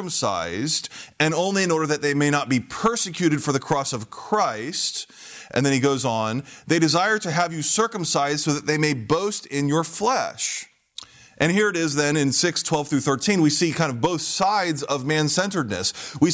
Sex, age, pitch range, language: male, 30-49, 130-170 Hz, English